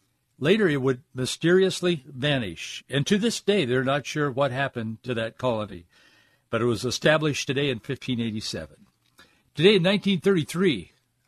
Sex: male